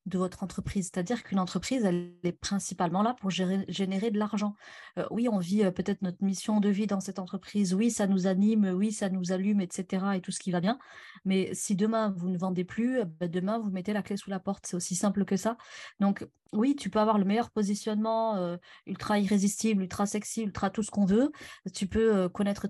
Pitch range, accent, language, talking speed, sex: 185-220 Hz, French, French, 220 wpm, female